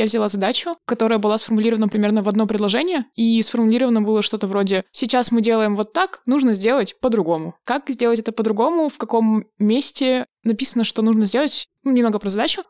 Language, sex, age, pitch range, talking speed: Russian, female, 20-39, 210-240 Hz, 175 wpm